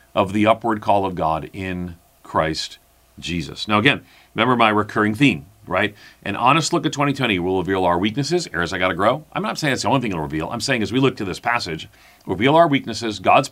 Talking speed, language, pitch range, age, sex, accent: 220 wpm, English, 95-125 Hz, 40-59, male, American